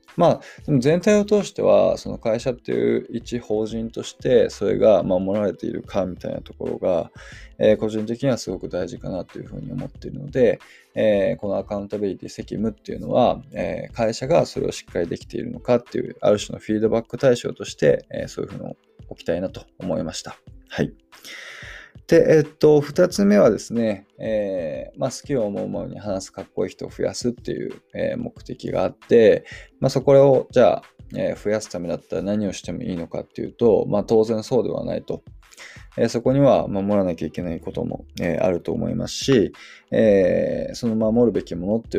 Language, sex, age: Japanese, male, 20-39